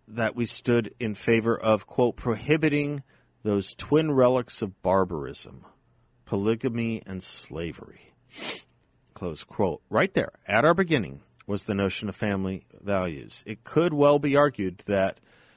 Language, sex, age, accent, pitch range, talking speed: English, male, 40-59, American, 90-120 Hz, 135 wpm